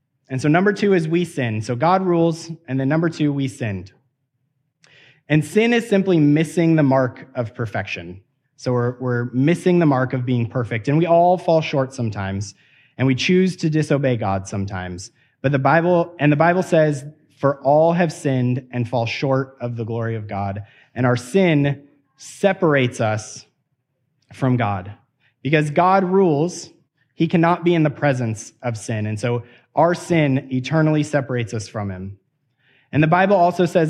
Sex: male